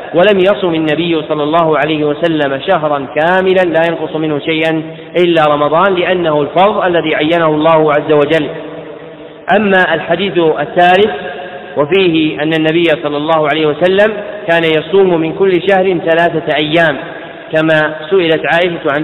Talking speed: 135 wpm